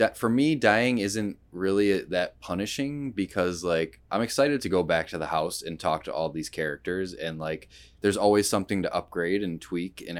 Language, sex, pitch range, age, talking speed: English, male, 80-95 Hz, 20-39, 200 wpm